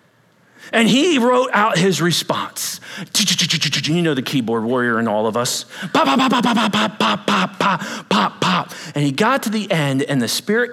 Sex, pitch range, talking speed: male, 115-150 Hz, 190 wpm